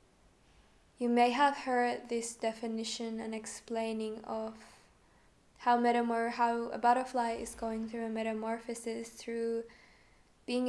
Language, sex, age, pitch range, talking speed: Finnish, female, 10-29, 230-245 Hz, 120 wpm